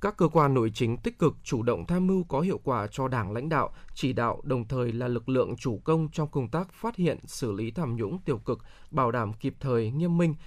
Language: Vietnamese